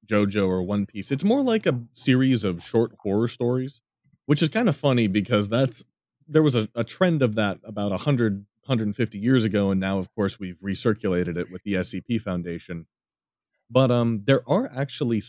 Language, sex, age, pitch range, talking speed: English, male, 30-49, 95-125 Hz, 200 wpm